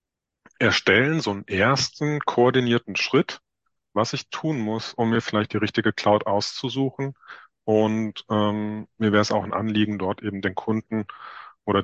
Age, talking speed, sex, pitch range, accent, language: 30-49, 150 wpm, male, 100-115 Hz, German, German